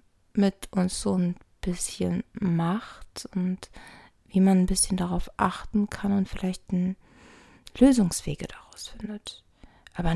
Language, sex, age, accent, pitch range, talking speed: German, female, 20-39, German, 165-200 Hz, 120 wpm